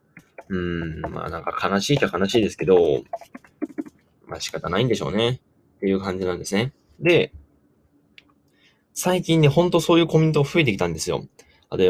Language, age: Japanese, 20-39